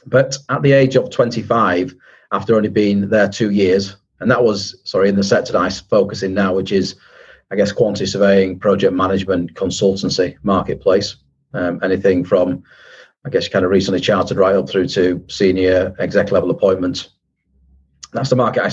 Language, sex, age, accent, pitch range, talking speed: English, male, 40-59, British, 100-125 Hz, 175 wpm